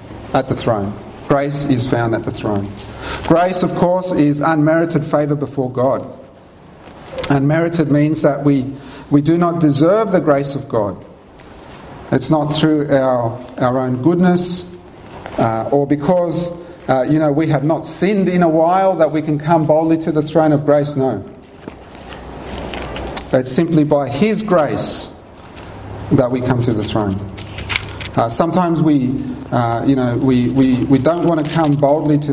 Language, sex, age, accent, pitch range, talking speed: English, male, 40-59, Australian, 120-160 Hz, 160 wpm